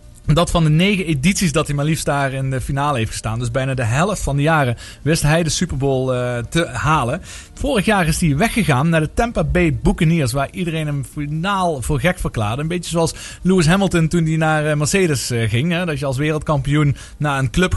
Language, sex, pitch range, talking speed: Dutch, male, 135-170 Hz, 220 wpm